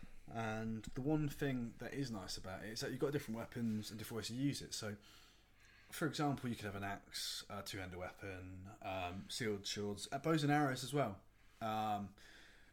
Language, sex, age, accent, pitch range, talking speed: English, male, 20-39, British, 105-125 Hz, 200 wpm